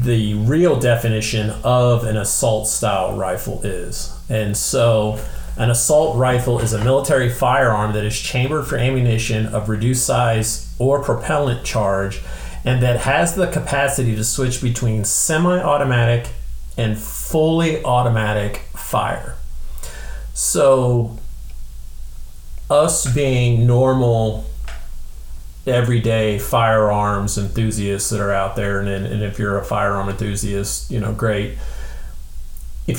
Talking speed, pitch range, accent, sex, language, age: 115 wpm, 75-120 Hz, American, male, English, 40-59